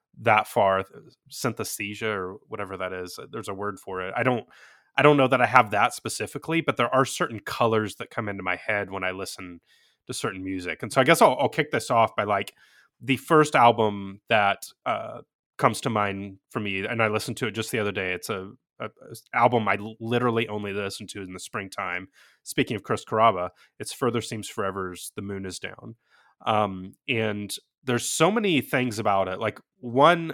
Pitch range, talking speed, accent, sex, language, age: 100-125 Hz, 205 wpm, American, male, English, 30-49